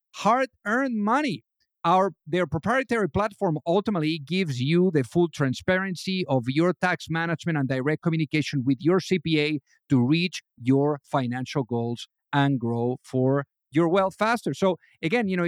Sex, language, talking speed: male, English, 145 wpm